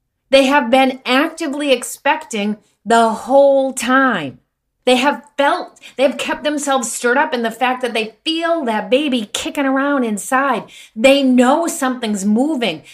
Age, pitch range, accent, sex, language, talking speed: 30-49, 210-280 Hz, American, female, English, 150 wpm